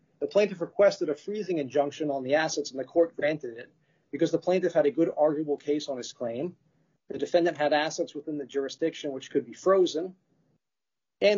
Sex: male